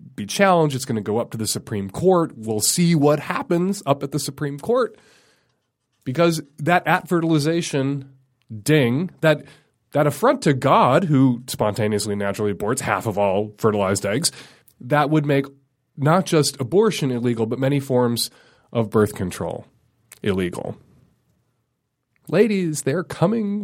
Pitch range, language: 120-165 Hz, English